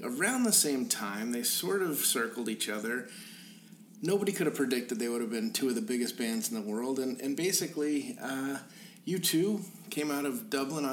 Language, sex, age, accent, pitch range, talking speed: English, male, 50-69, American, 135-210 Hz, 190 wpm